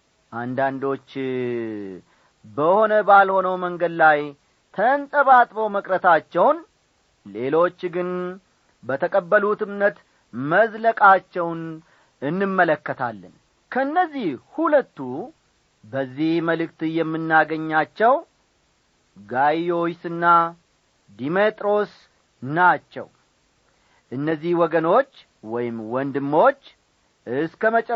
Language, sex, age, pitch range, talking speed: English, male, 40-59, 150-215 Hz, 50 wpm